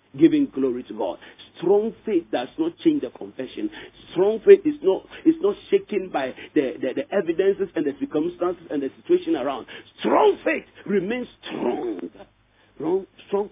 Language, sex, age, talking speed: English, male, 50-69, 155 wpm